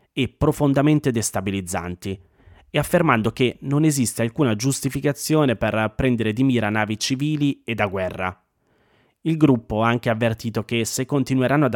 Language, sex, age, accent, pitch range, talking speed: Italian, male, 30-49, native, 105-130 Hz, 145 wpm